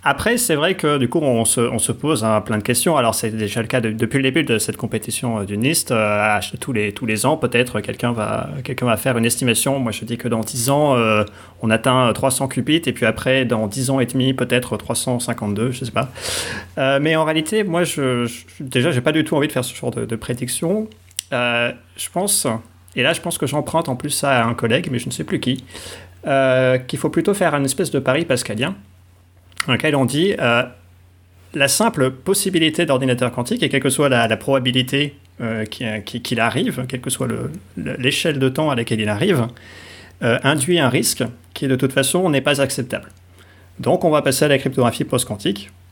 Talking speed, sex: 225 wpm, male